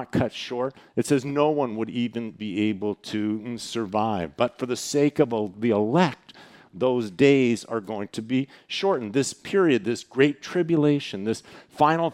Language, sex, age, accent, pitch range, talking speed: English, male, 50-69, American, 110-140 Hz, 165 wpm